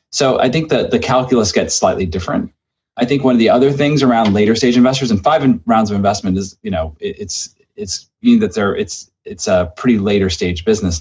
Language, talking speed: English, 230 wpm